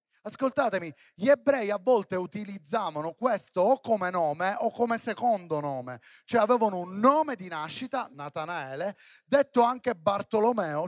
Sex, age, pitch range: male, 30-49, 165-230 Hz